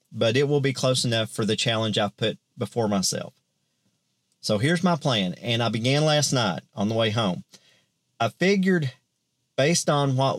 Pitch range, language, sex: 115-145 Hz, English, male